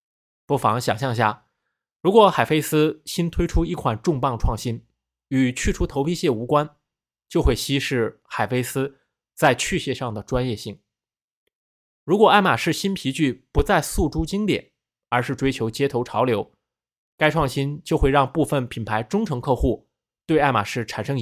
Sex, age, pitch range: male, 20-39, 115-155 Hz